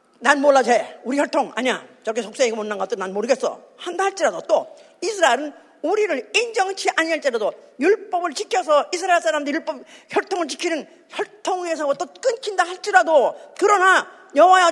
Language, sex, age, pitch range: Korean, female, 40-59, 275-370 Hz